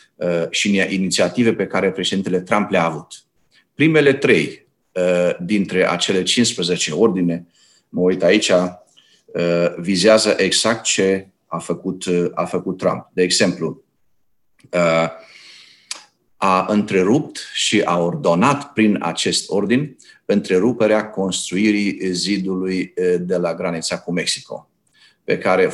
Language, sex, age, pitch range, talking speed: Romanian, male, 40-59, 90-110 Hz, 105 wpm